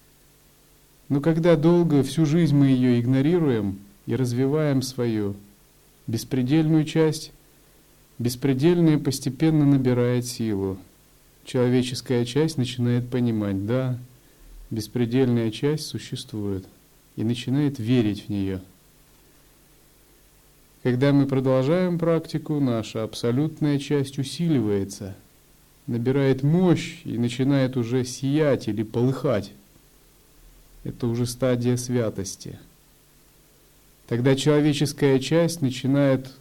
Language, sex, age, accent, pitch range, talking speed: Russian, male, 40-59, native, 110-140 Hz, 90 wpm